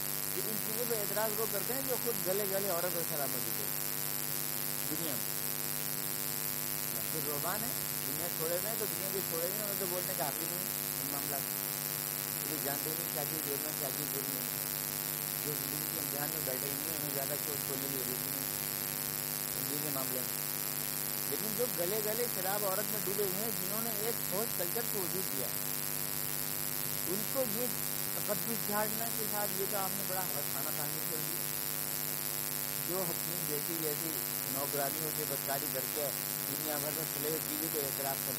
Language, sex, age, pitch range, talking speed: Urdu, male, 50-69, 140-205 Hz, 130 wpm